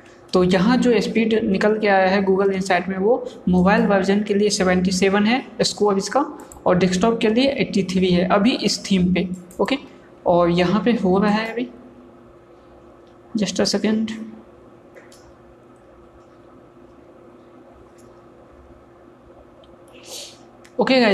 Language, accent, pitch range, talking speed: Hindi, native, 195-235 Hz, 120 wpm